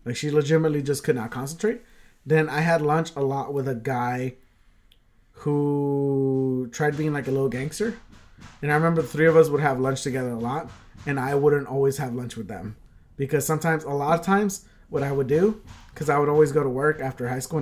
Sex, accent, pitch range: male, American, 130-165 Hz